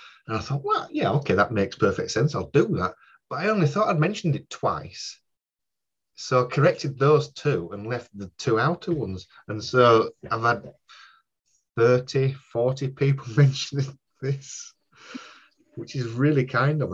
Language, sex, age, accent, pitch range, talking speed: English, male, 30-49, British, 115-155 Hz, 165 wpm